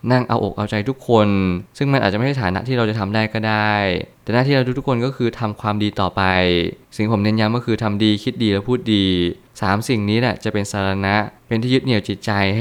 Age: 20-39